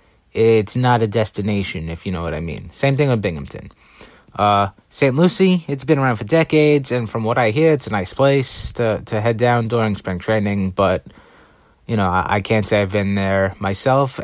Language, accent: English, American